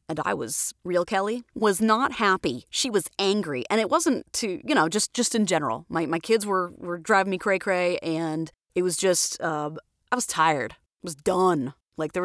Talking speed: 210 wpm